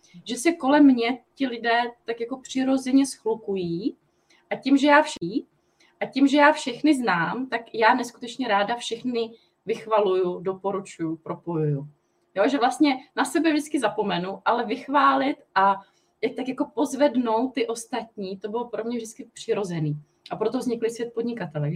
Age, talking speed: 20-39, 150 wpm